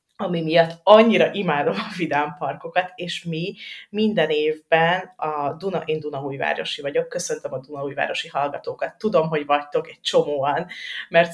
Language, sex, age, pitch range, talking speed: Hungarian, female, 30-49, 140-170 Hz, 140 wpm